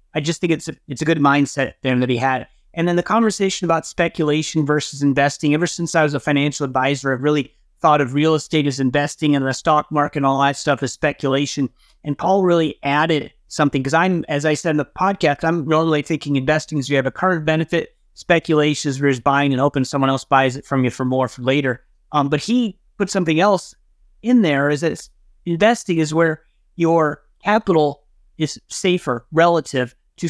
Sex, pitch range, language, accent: male, 140-170 Hz, English, American